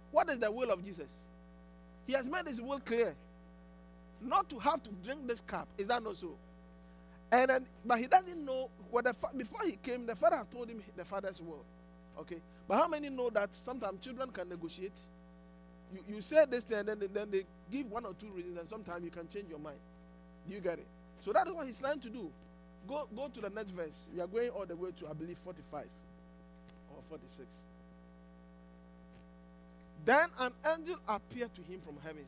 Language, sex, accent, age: English, male, Nigerian, 50-69